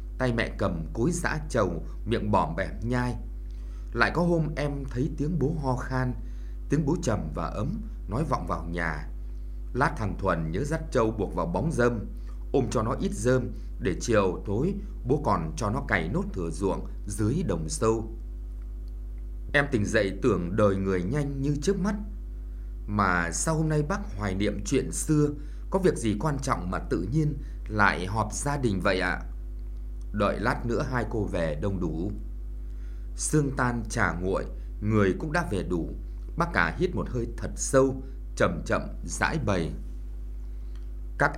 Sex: male